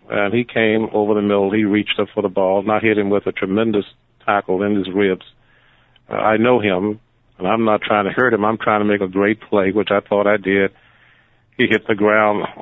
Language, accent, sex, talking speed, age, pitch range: English, American, male, 240 wpm, 50-69, 100-110 Hz